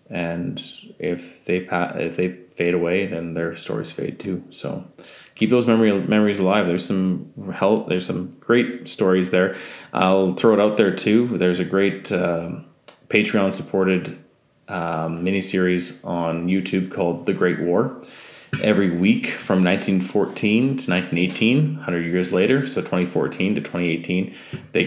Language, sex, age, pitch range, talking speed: English, male, 20-39, 85-95 Hz, 145 wpm